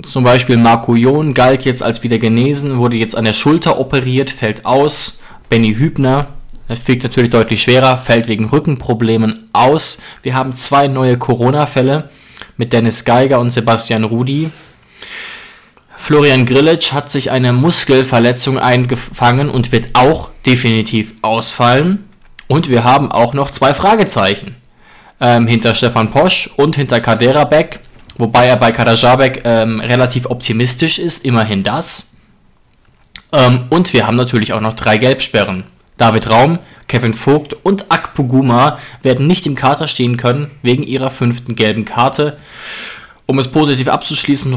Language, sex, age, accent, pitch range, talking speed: German, male, 20-39, German, 115-135 Hz, 145 wpm